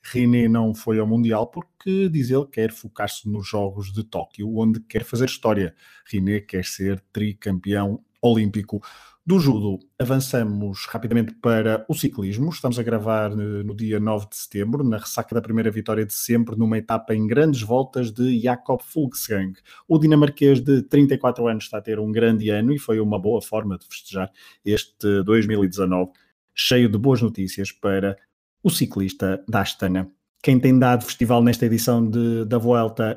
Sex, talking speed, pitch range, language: male, 165 wpm, 105-125 Hz, Portuguese